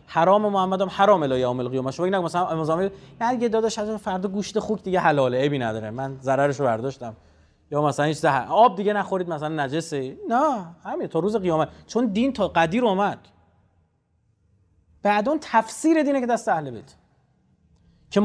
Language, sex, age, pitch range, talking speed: Persian, male, 30-49, 140-200 Hz, 170 wpm